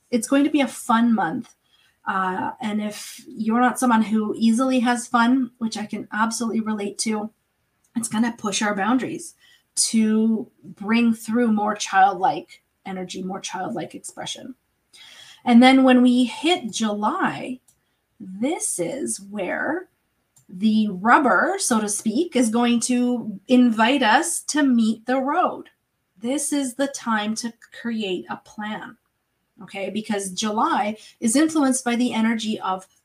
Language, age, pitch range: English, 30-49, 210-255 Hz